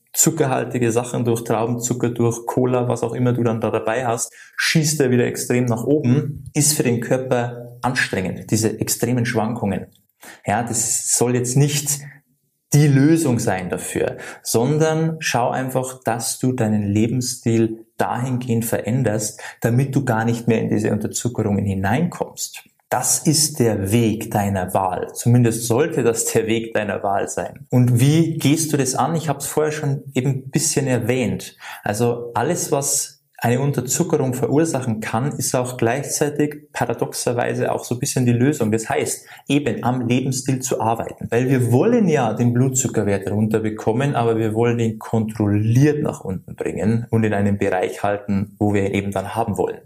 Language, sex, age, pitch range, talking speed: German, male, 20-39, 115-140 Hz, 160 wpm